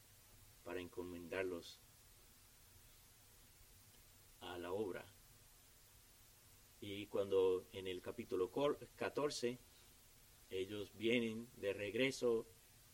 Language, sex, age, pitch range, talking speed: Spanish, male, 30-49, 105-120 Hz, 70 wpm